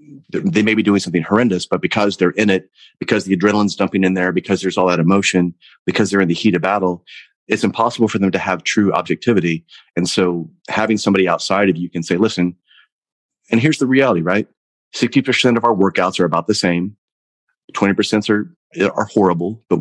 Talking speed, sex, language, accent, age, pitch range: 195 wpm, male, English, American, 30-49, 85-100 Hz